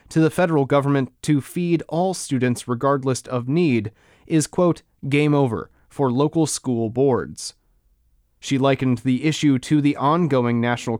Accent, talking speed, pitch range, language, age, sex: American, 145 wpm, 125-150 Hz, English, 30-49, male